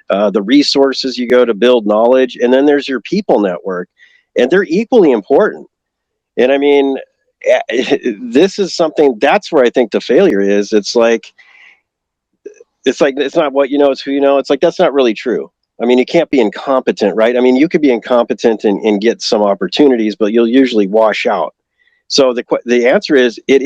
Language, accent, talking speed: English, American, 200 wpm